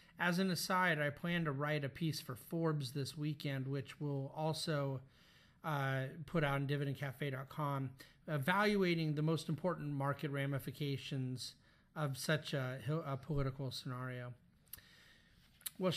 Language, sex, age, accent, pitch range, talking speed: English, male, 40-59, American, 145-190 Hz, 130 wpm